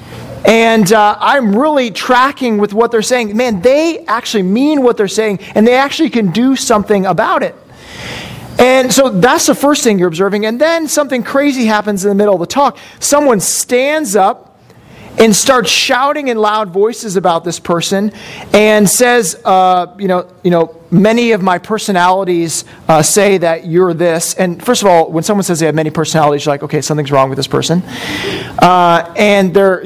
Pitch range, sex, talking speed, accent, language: 185-255 Hz, male, 185 wpm, American, English